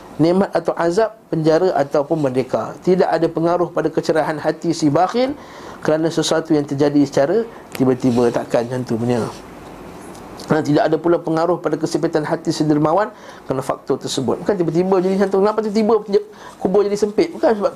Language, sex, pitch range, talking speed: Malay, male, 140-180 Hz, 155 wpm